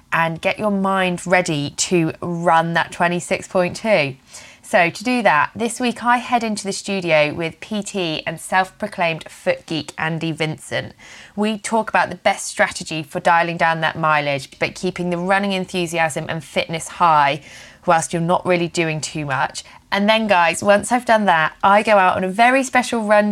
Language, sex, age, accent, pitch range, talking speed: English, female, 20-39, British, 165-205 Hz, 180 wpm